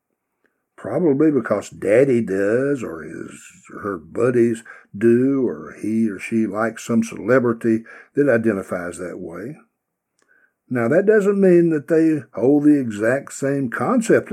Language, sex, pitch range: English, male, 115-165 Hz